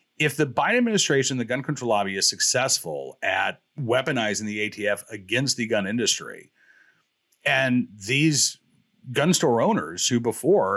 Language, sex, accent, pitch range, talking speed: English, male, American, 115-160 Hz, 140 wpm